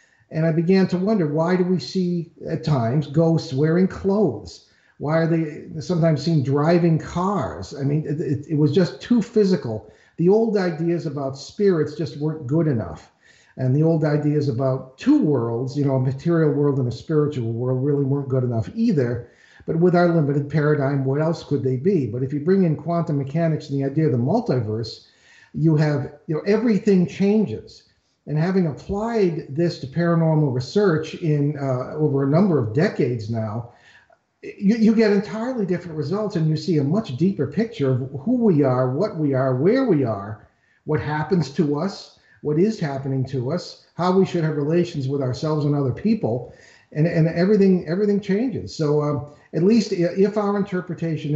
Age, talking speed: 50-69, 185 wpm